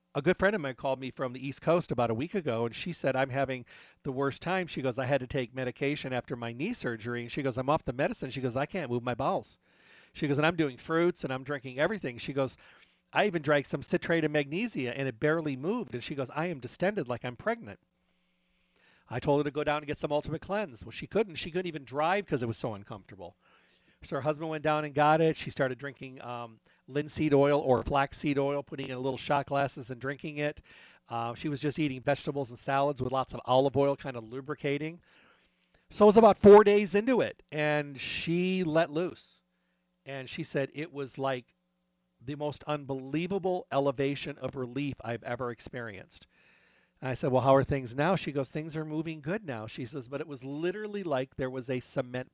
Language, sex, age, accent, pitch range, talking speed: English, male, 40-59, American, 130-155 Hz, 225 wpm